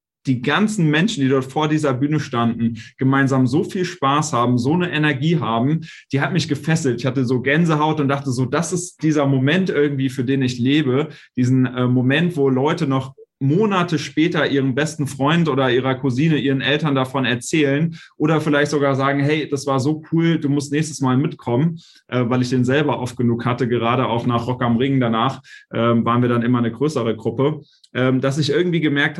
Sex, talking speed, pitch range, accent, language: male, 200 wpm, 130-155 Hz, German, German